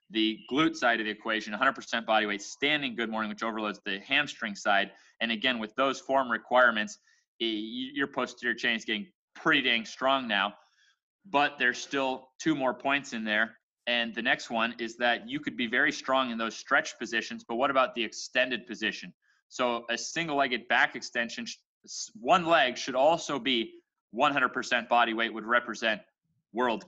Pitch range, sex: 110-135 Hz, male